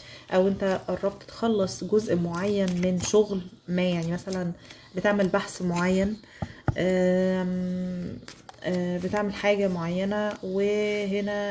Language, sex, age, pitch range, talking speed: Arabic, female, 20-39, 180-200 Hz, 95 wpm